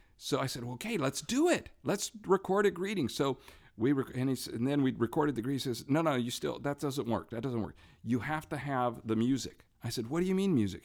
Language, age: English, 50-69